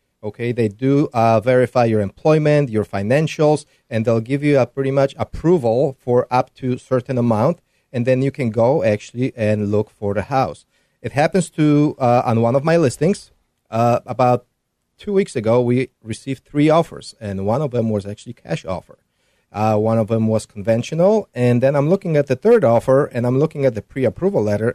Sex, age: male, 40-59